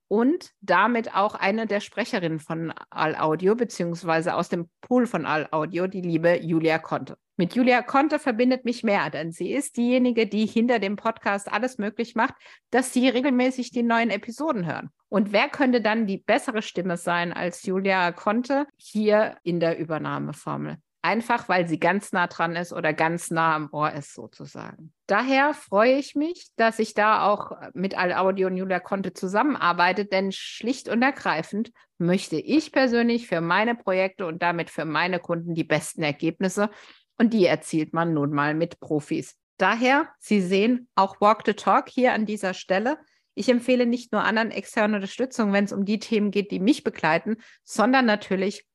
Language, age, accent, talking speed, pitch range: German, 50-69, German, 175 wpm, 175-235 Hz